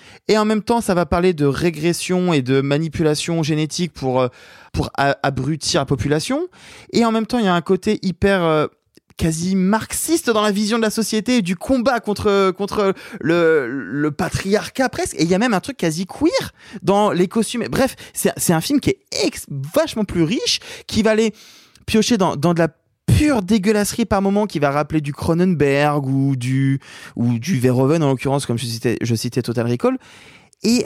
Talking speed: 195 wpm